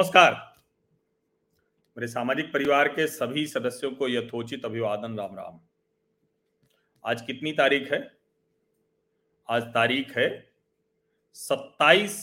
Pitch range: 140-210 Hz